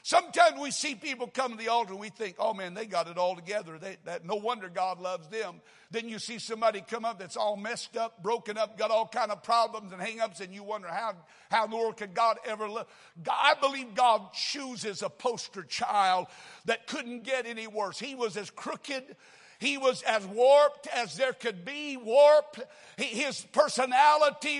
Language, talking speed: English, 200 wpm